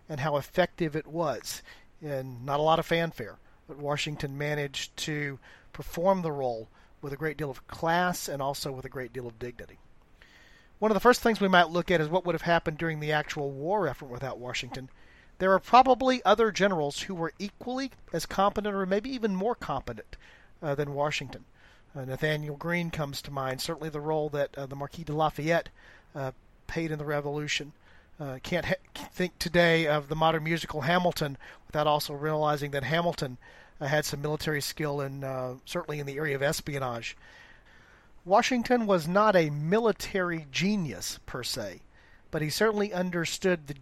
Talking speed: 180 wpm